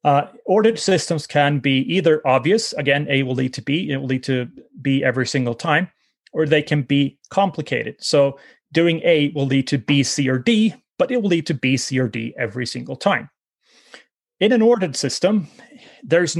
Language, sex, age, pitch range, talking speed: English, male, 30-49, 140-180 Hz, 195 wpm